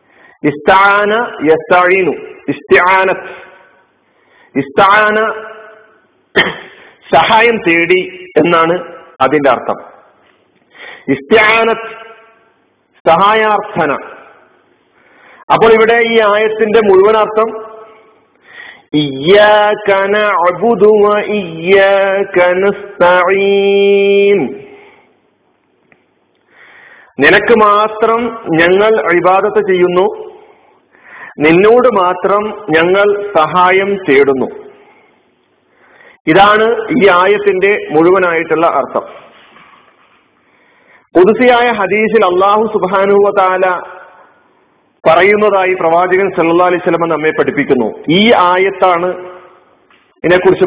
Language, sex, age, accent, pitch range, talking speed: Malayalam, male, 50-69, native, 180-220 Hz, 60 wpm